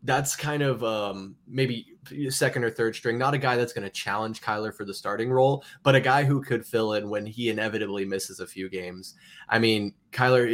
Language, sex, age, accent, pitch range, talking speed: English, male, 20-39, American, 100-125 Hz, 215 wpm